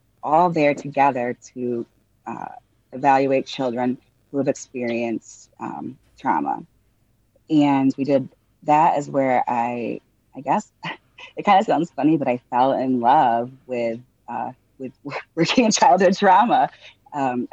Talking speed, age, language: 135 wpm, 30-49, English